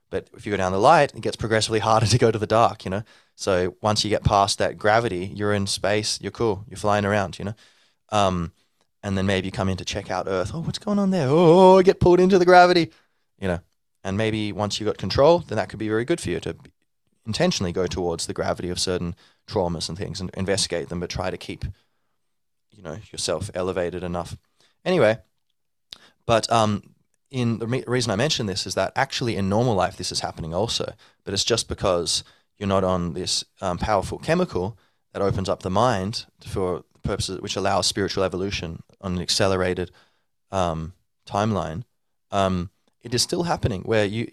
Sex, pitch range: male, 95-115 Hz